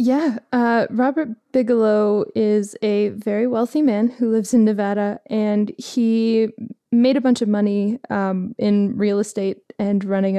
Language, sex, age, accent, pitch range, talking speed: English, female, 20-39, American, 205-240 Hz, 150 wpm